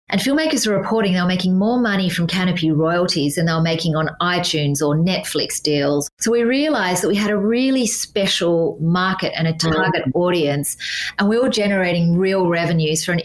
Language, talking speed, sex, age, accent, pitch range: English, 195 wpm, female, 30-49, Australian, 160-190 Hz